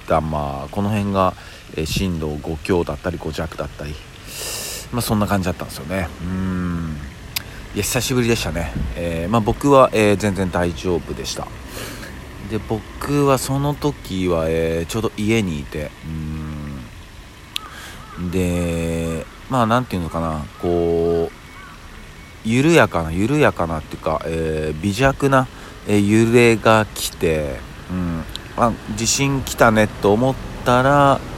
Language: Japanese